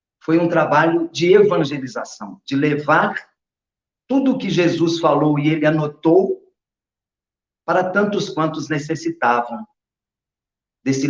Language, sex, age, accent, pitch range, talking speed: Portuguese, male, 50-69, Brazilian, 135-185 Hz, 110 wpm